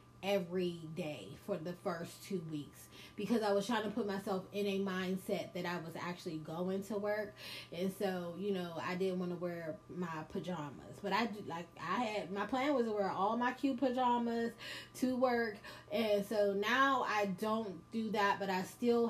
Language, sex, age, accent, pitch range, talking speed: English, female, 20-39, American, 180-230 Hz, 195 wpm